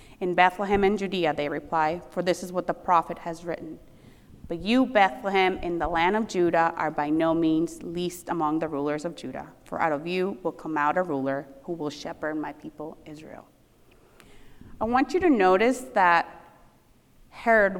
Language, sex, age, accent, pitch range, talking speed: English, female, 30-49, American, 175-230 Hz, 180 wpm